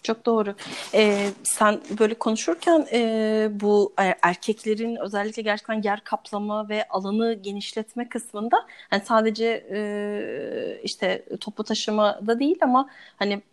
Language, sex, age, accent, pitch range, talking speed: Turkish, female, 30-49, native, 200-235 Hz, 120 wpm